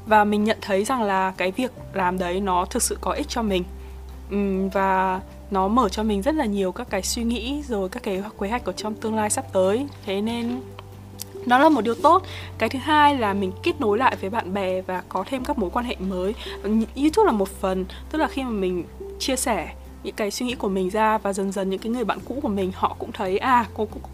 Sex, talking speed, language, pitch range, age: female, 250 wpm, Vietnamese, 190-235 Hz, 20-39